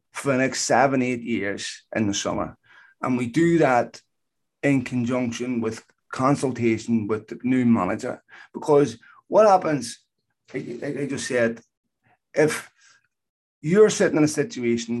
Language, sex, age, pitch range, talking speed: English, male, 30-49, 110-135 Hz, 135 wpm